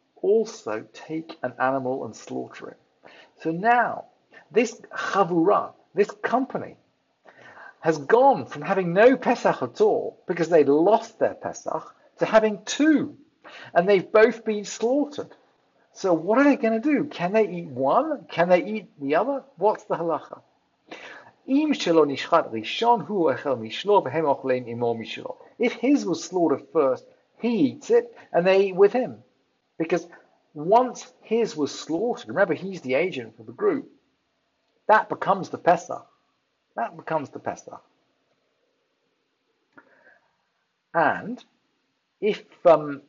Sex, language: male, English